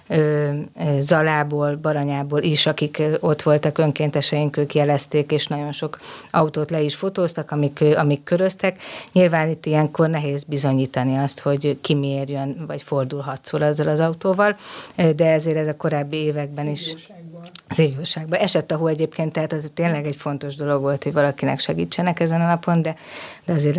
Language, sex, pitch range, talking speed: Hungarian, female, 145-165 Hz, 155 wpm